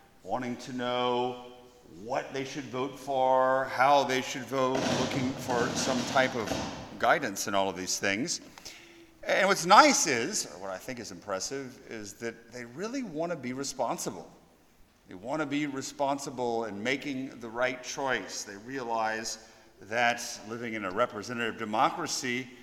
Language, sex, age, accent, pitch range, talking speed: English, male, 50-69, American, 125-145 Hz, 155 wpm